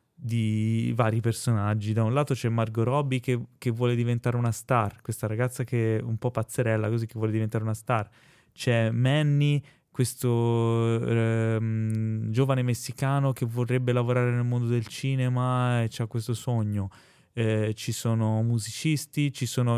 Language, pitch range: Italian, 115-130 Hz